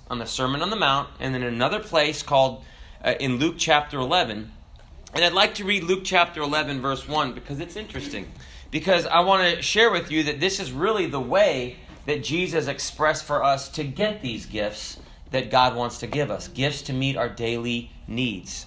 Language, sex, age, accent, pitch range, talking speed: English, male, 30-49, American, 125-190 Hz, 205 wpm